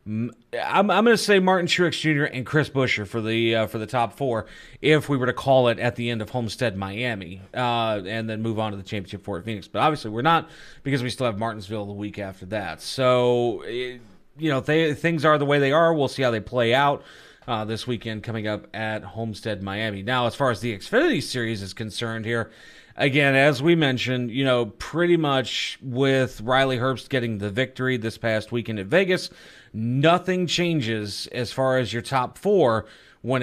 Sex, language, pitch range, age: male, English, 110-140 Hz, 30-49